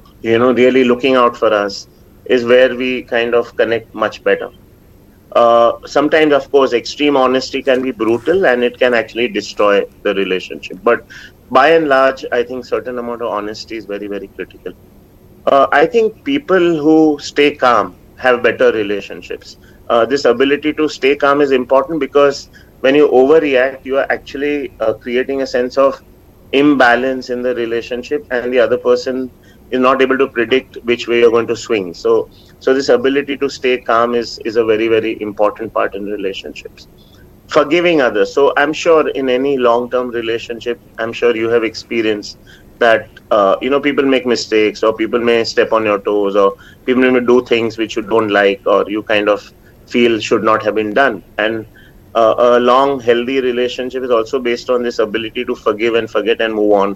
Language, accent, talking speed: English, Indian, 185 wpm